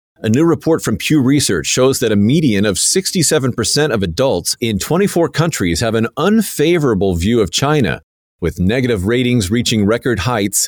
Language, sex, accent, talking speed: English, male, American, 165 wpm